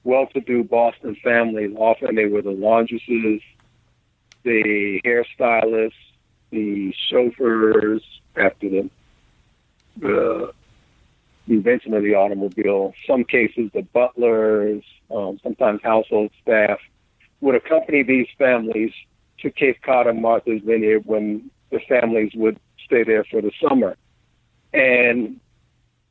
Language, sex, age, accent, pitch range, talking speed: English, male, 50-69, American, 110-125 Hz, 110 wpm